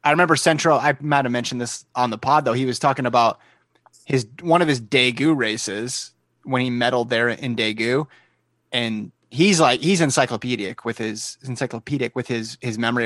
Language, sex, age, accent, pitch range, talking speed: English, male, 30-49, American, 115-140 Hz, 185 wpm